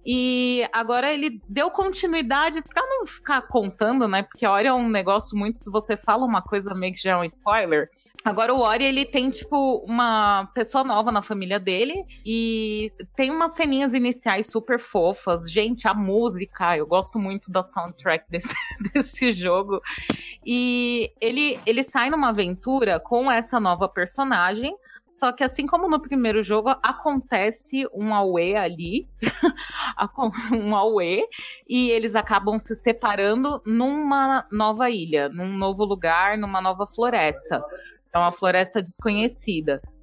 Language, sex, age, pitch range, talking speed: Portuguese, female, 20-39, 205-265 Hz, 145 wpm